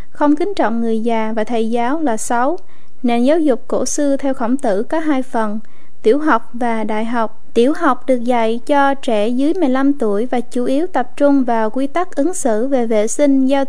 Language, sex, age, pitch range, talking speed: Vietnamese, female, 20-39, 230-285 Hz, 215 wpm